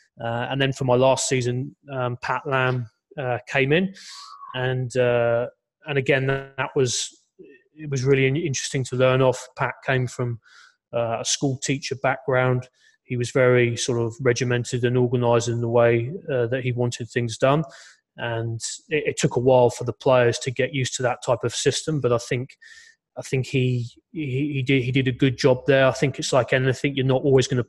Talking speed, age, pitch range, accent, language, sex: 200 wpm, 20-39, 120-135 Hz, British, English, male